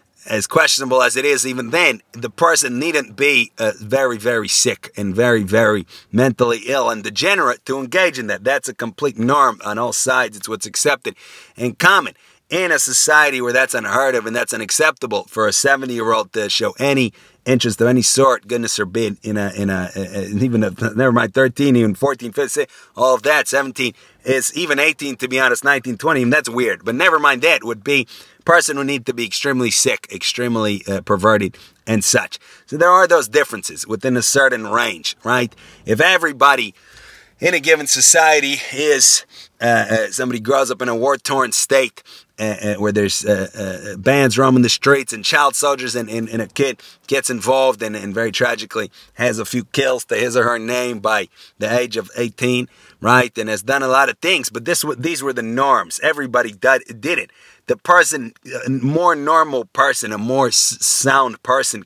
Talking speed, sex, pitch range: 195 wpm, male, 110-135 Hz